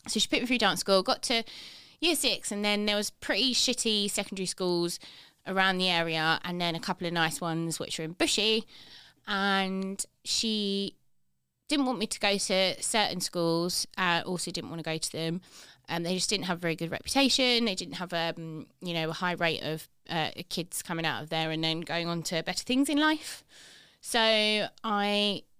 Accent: British